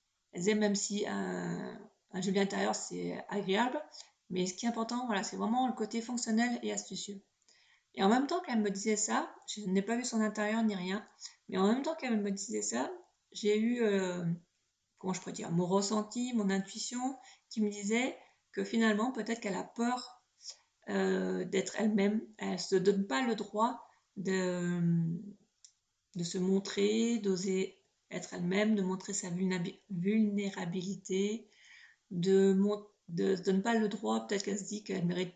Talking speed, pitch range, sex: 170 wpm, 190-225 Hz, female